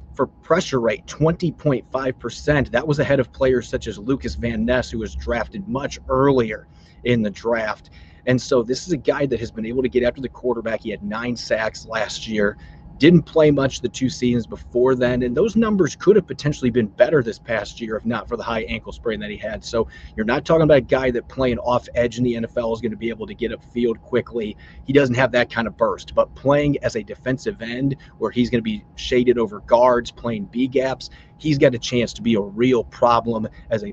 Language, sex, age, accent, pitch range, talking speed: English, male, 30-49, American, 115-135 Hz, 230 wpm